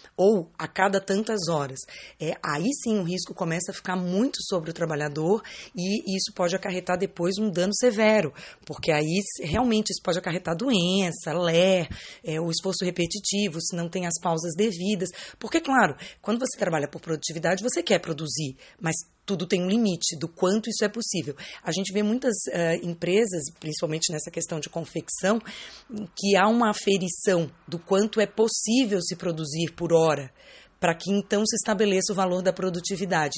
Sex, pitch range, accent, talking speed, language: female, 175-210 Hz, Brazilian, 165 wpm, Portuguese